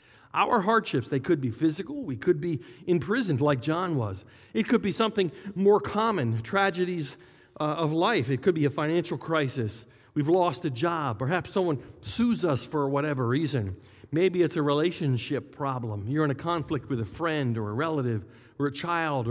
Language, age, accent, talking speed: English, 50-69, American, 180 wpm